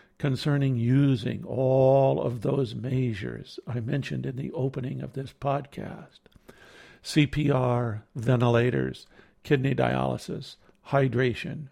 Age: 60-79